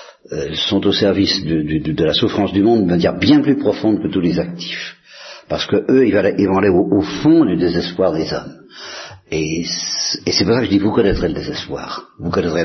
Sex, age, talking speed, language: male, 50-69, 210 wpm, Italian